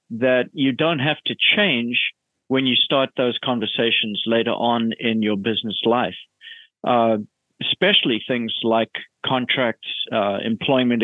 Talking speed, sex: 130 wpm, male